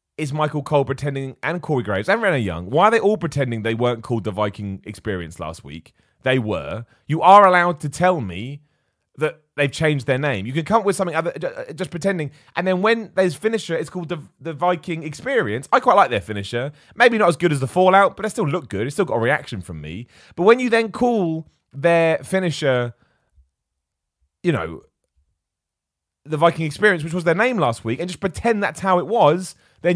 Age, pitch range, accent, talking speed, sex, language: 30-49, 110-180 Hz, British, 210 wpm, male, English